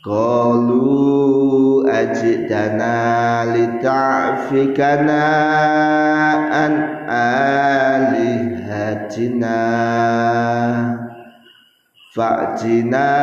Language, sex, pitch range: Indonesian, male, 120-140 Hz